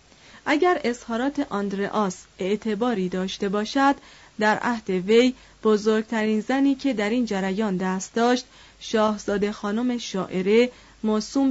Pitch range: 200-250 Hz